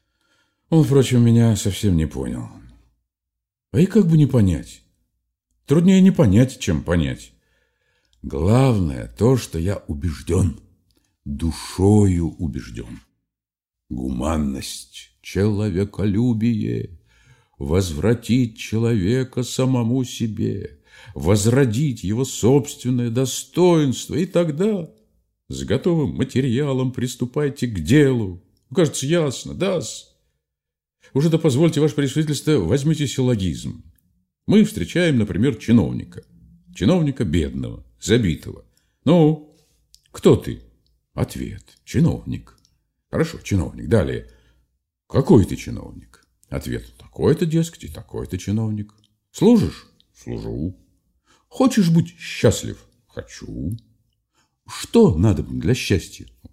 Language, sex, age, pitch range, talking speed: Russian, male, 50-69, 90-140 Hz, 90 wpm